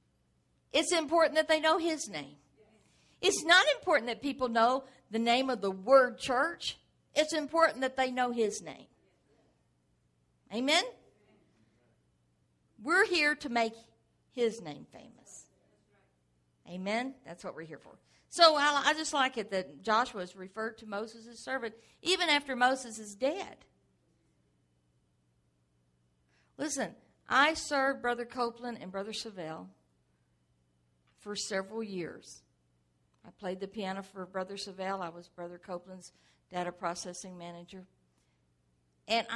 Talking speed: 125 wpm